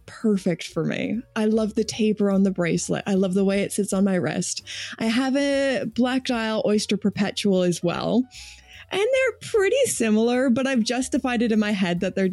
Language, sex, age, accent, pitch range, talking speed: English, female, 20-39, American, 190-255 Hz, 200 wpm